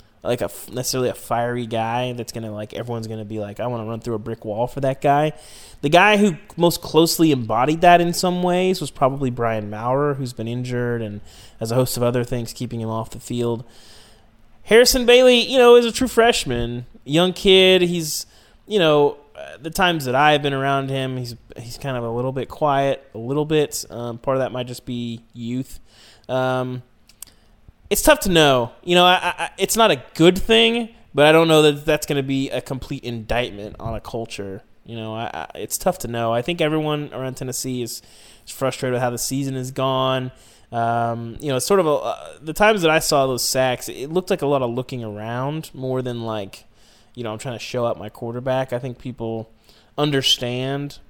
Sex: male